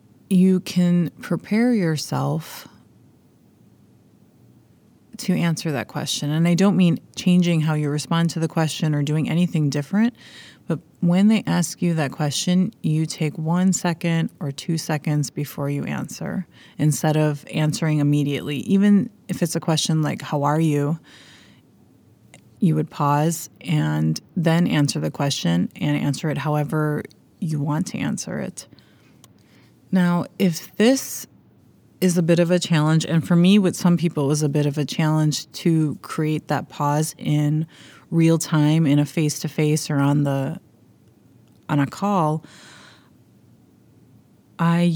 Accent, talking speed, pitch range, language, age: American, 145 wpm, 150-175 Hz, English, 30-49